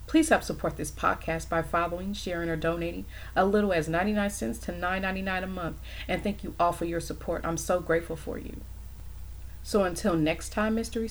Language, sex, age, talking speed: English, female, 40-59, 195 wpm